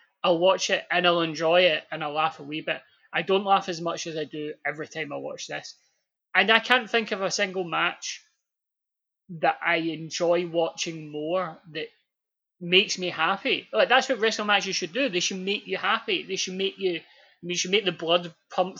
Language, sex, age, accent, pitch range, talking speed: English, male, 20-39, British, 170-200 Hz, 210 wpm